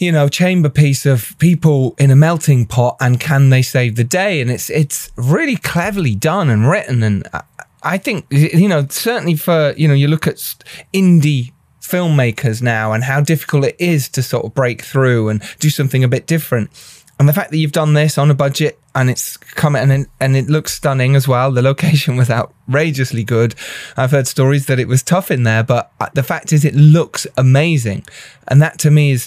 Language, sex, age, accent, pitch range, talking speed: English, male, 20-39, British, 125-155 Hz, 205 wpm